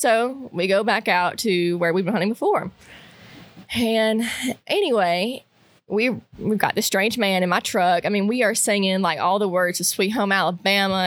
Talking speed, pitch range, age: 190 wpm, 180-225 Hz, 20-39